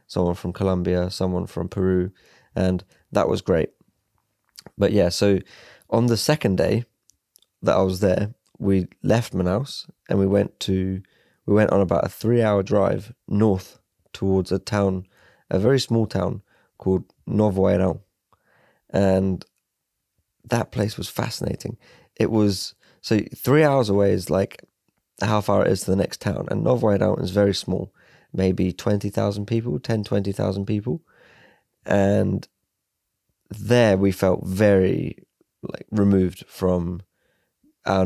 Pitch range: 95-105 Hz